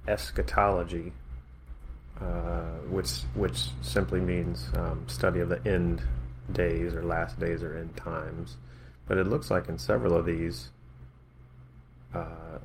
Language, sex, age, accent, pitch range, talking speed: English, male, 30-49, American, 65-90 Hz, 130 wpm